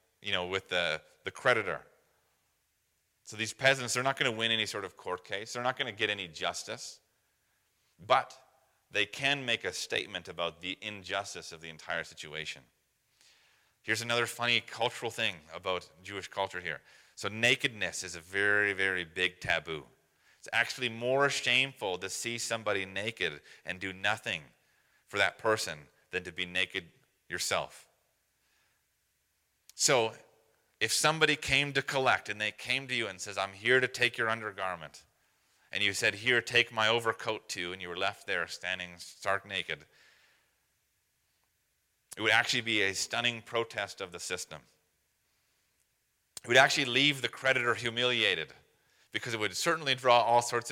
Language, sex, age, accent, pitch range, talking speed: English, male, 30-49, American, 95-120 Hz, 160 wpm